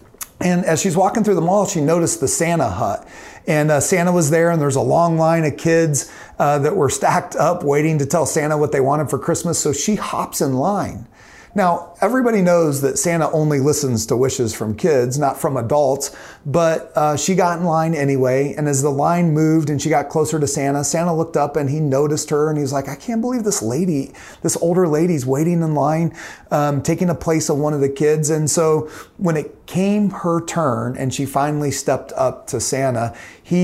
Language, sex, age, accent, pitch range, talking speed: English, male, 40-59, American, 135-170 Hz, 215 wpm